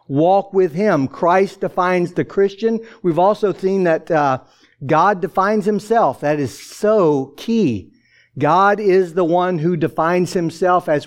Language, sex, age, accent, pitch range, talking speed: English, male, 60-79, American, 160-210 Hz, 145 wpm